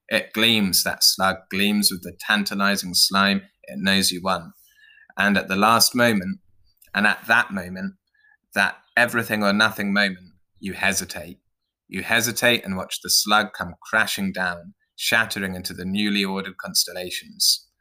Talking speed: 150 wpm